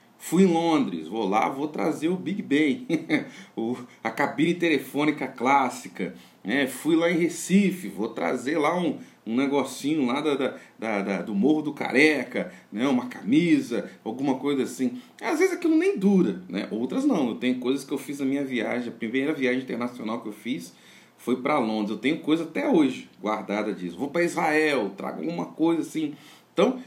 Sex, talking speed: male, 185 wpm